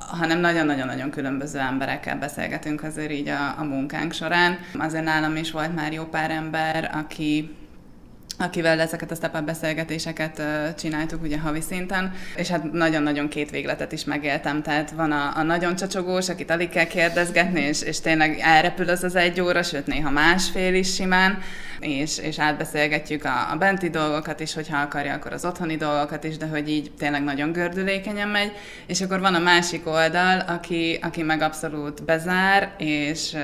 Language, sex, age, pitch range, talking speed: Hungarian, female, 20-39, 150-175 Hz, 165 wpm